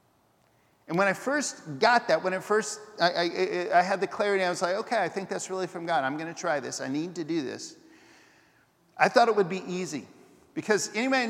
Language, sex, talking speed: English, male, 235 wpm